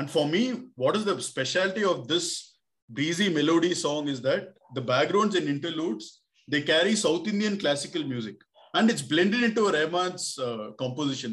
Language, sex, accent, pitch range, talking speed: English, male, Indian, 125-175 Hz, 165 wpm